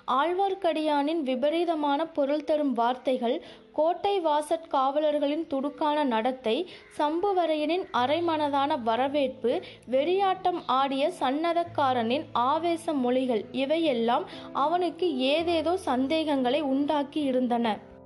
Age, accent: 20-39, native